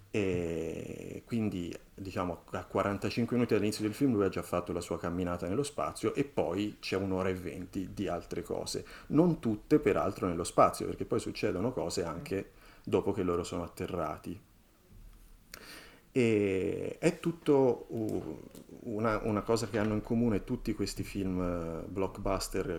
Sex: male